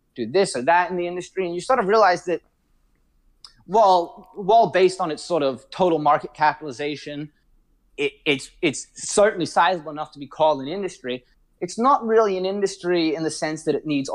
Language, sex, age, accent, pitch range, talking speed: English, male, 30-49, American, 140-190 Hz, 195 wpm